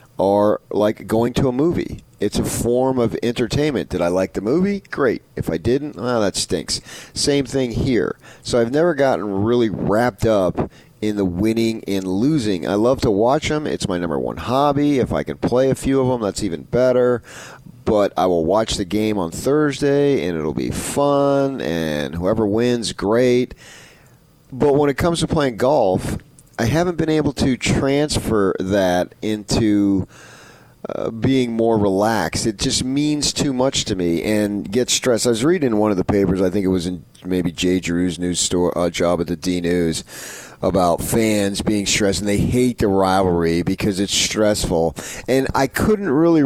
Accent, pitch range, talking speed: American, 95-135 Hz, 185 wpm